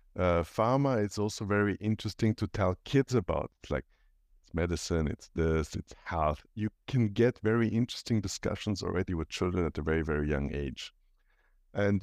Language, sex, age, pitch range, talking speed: English, male, 50-69, 90-115 Hz, 165 wpm